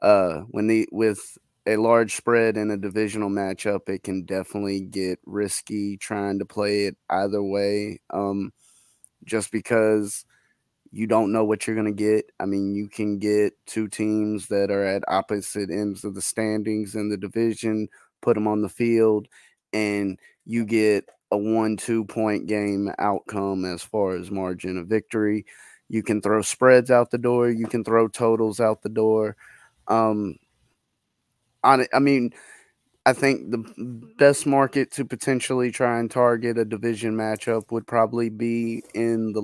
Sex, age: male, 20-39